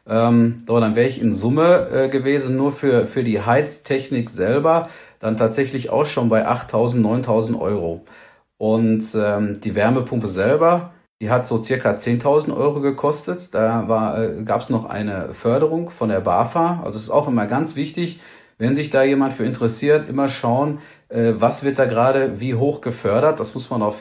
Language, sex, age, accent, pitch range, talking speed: German, male, 40-59, German, 110-135 Hz, 180 wpm